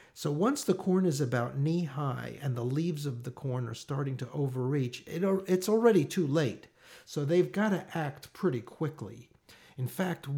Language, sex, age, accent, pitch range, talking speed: English, male, 50-69, American, 125-160 Hz, 175 wpm